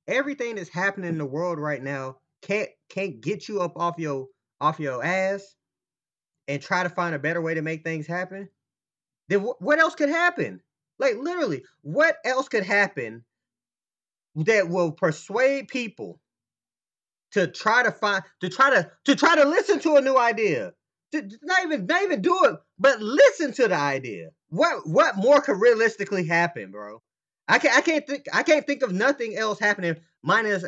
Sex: male